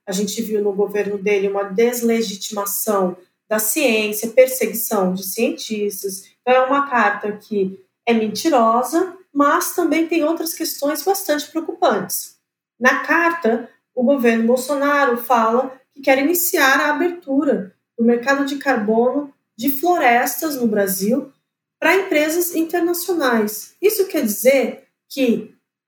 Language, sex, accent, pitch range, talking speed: Portuguese, female, Brazilian, 225-330 Hz, 125 wpm